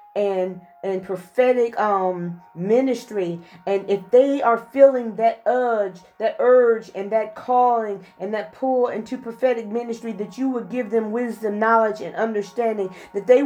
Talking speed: 150 wpm